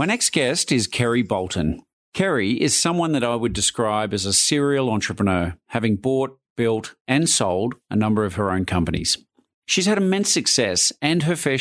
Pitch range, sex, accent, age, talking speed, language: 105-140 Hz, male, Australian, 40-59, 180 wpm, English